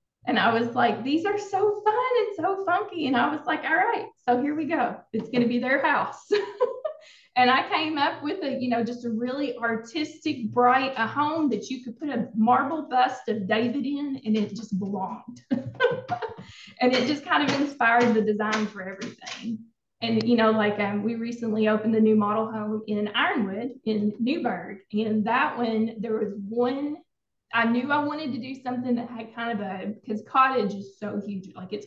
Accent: American